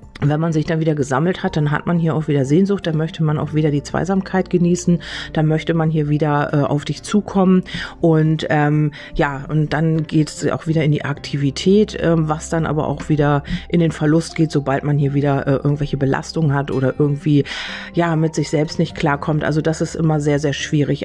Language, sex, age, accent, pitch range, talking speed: German, female, 40-59, German, 145-170 Hz, 215 wpm